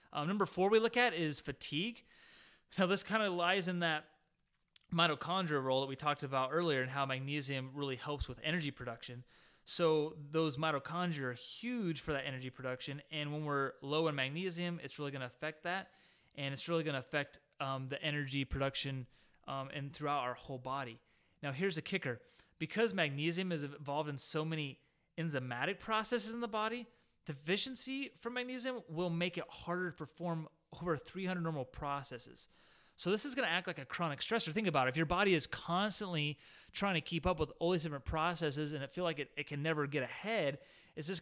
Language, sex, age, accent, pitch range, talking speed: English, male, 30-49, American, 140-175 Hz, 195 wpm